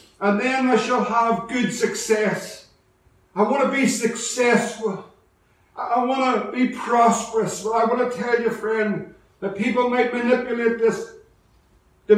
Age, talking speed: 60-79, 155 wpm